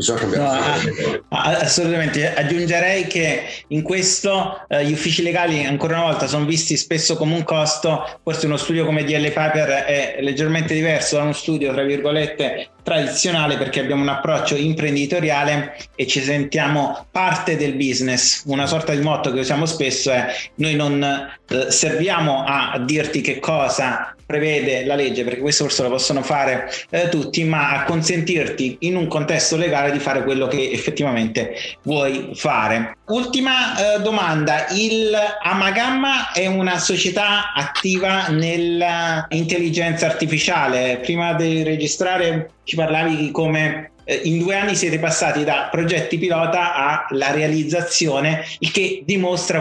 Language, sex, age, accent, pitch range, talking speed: Italian, male, 30-49, native, 145-180 Hz, 140 wpm